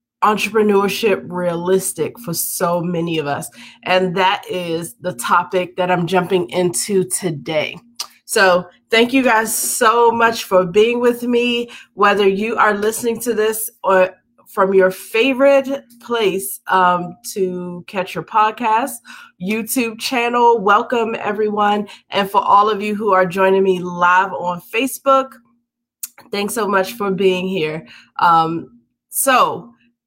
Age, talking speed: 20-39, 135 wpm